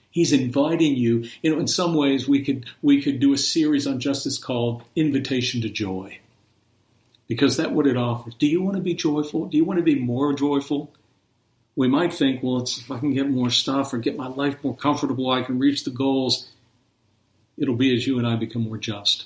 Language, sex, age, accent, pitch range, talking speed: English, male, 50-69, American, 115-140 Hz, 220 wpm